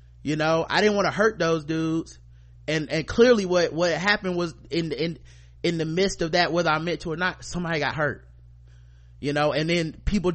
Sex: male